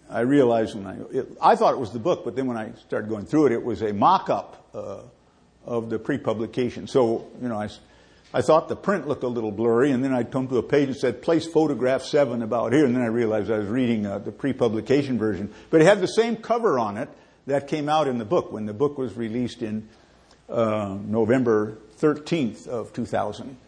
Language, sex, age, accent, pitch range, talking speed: English, male, 50-69, American, 110-140 Hz, 225 wpm